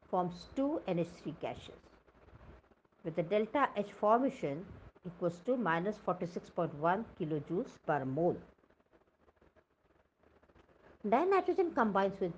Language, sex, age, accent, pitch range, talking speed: English, female, 60-79, Indian, 165-225 Hz, 90 wpm